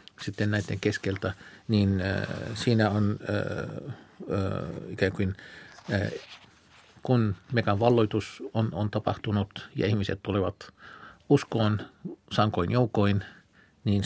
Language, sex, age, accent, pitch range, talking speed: Finnish, male, 50-69, native, 95-110 Hz, 100 wpm